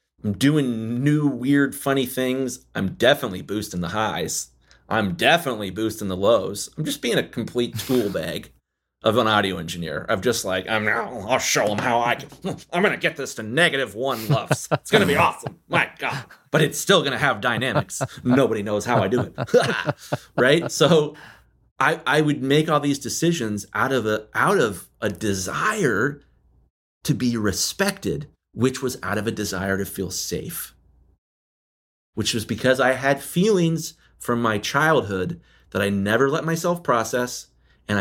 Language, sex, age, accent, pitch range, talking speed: English, male, 30-49, American, 95-130 Hz, 175 wpm